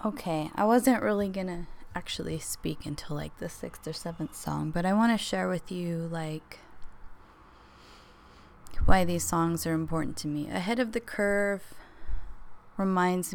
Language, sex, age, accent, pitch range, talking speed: English, female, 20-39, American, 165-195 Hz, 150 wpm